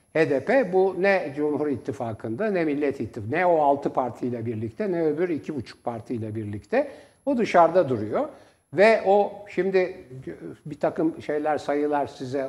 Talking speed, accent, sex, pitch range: 140 wpm, native, male, 135-185 Hz